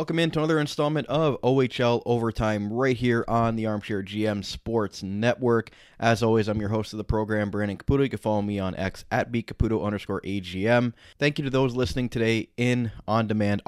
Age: 20-39